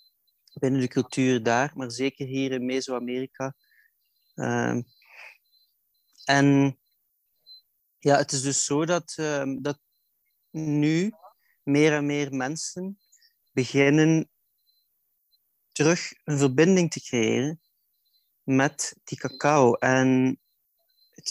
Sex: male